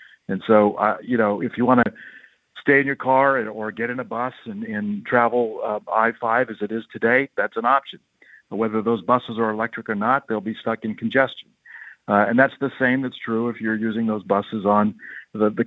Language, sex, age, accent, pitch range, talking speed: English, male, 50-69, American, 105-125 Hz, 220 wpm